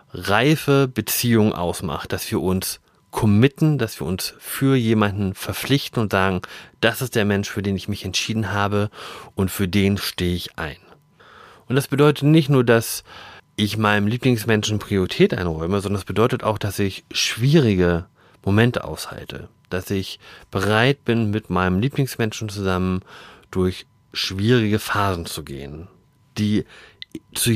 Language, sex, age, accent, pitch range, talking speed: German, male, 30-49, German, 95-125 Hz, 145 wpm